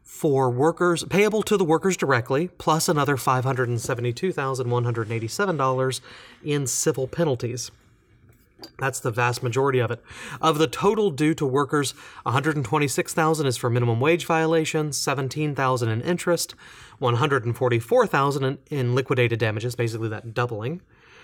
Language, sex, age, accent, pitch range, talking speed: English, male, 30-49, American, 120-160 Hz, 115 wpm